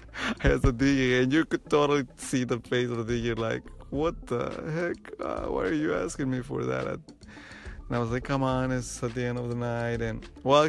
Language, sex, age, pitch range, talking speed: English, male, 30-49, 120-145 Hz, 230 wpm